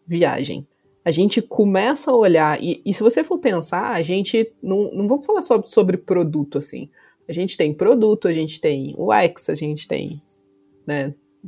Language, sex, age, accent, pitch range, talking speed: Portuguese, female, 20-39, Brazilian, 155-220 Hz, 180 wpm